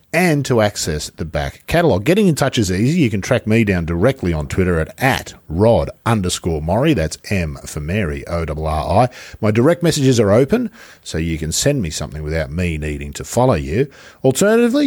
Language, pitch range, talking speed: English, 80-135 Hz, 200 wpm